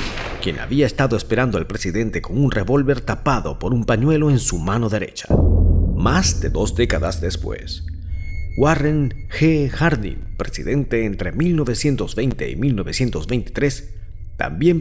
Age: 50-69